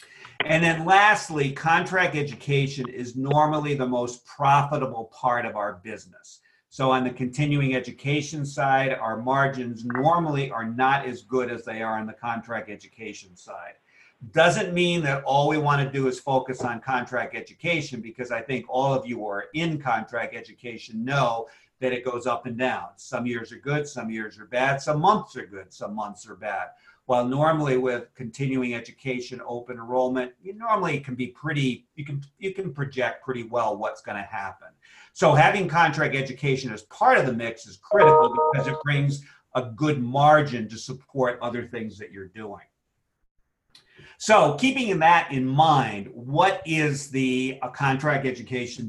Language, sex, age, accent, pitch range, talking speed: English, male, 50-69, American, 120-150 Hz, 170 wpm